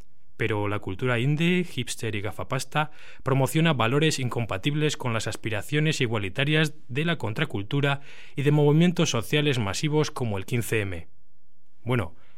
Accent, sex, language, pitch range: Spanish, male, Spanish, 110-140 Hz